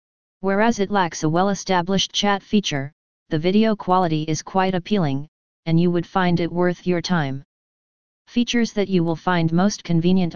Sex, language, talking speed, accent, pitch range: female, English, 160 wpm, American, 165-190 Hz